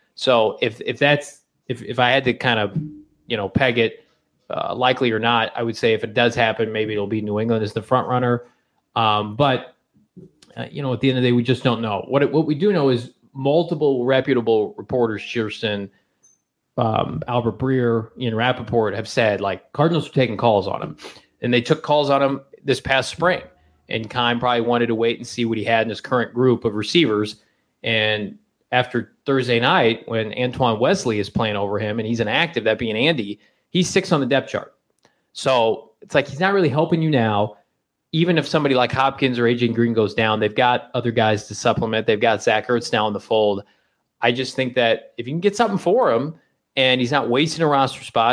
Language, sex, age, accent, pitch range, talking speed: English, male, 30-49, American, 115-135 Hz, 215 wpm